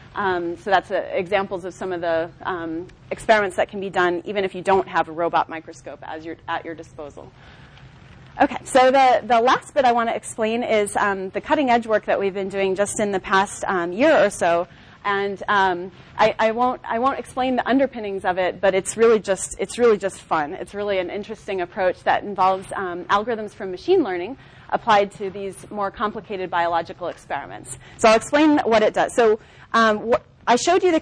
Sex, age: female, 30-49